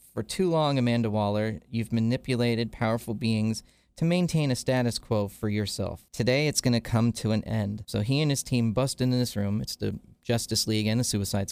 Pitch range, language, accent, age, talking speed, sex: 110-130 Hz, English, American, 30-49, 210 wpm, male